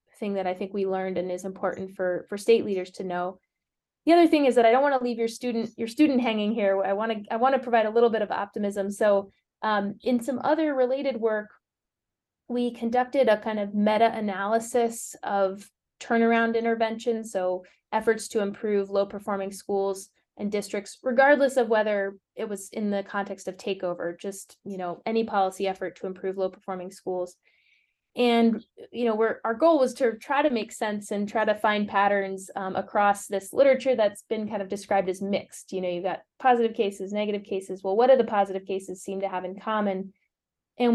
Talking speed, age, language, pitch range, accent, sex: 200 wpm, 20-39, English, 195-230 Hz, American, female